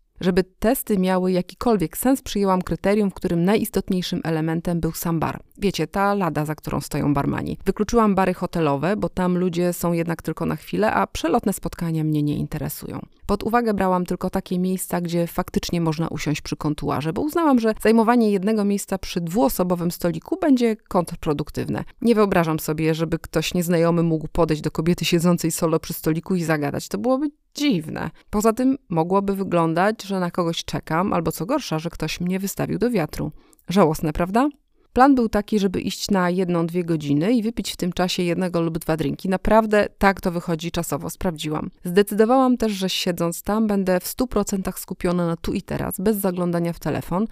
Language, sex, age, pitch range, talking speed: Polish, female, 30-49, 165-210 Hz, 180 wpm